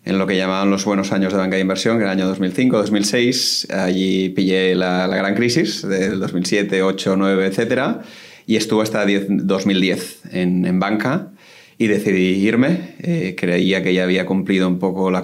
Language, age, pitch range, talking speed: Spanish, 30-49, 95-110 Hz, 175 wpm